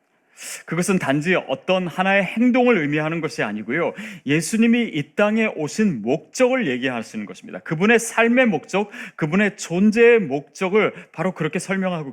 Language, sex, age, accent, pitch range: Korean, male, 30-49, native, 140-220 Hz